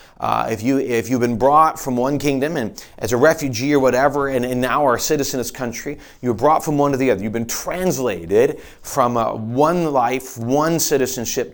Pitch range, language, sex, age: 120-155 Hz, English, male, 40-59